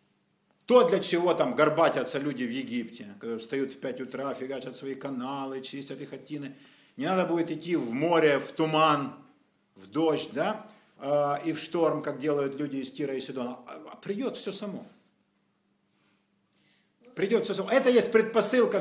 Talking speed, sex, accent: 160 wpm, male, native